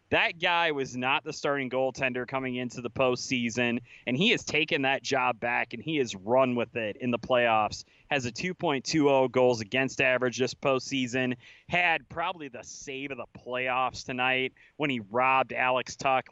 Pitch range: 115-135 Hz